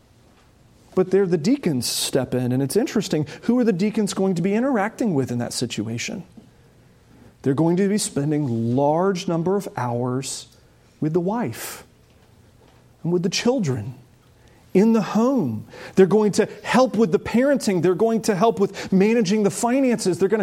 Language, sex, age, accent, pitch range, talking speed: English, male, 30-49, American, 170-245 Hz, 165 wpm